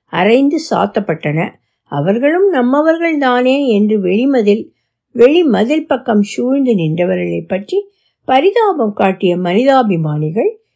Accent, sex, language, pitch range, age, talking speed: native, female, Tamil, 200-295 Hz, 60-79, 75 wpm